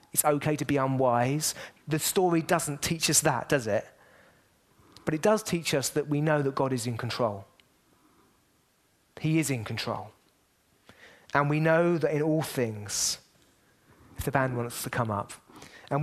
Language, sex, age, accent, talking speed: English, male, 30-49, British, 170 wpm